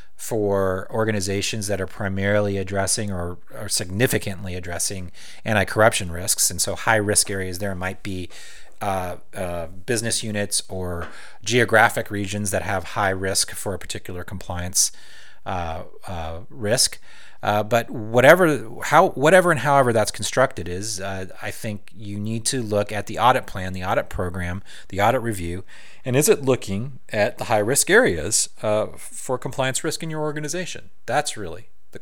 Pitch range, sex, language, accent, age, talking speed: 95-120 Hz, male, English, American, 30-49, 155 wpm